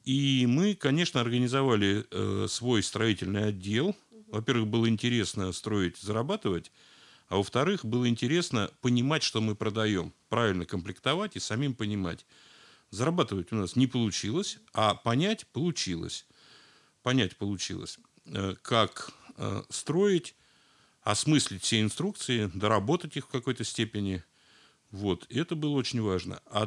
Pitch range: 100-135 Hz